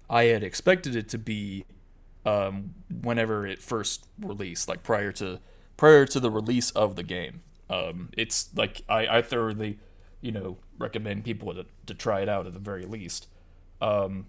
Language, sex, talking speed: English, male, 170 wpm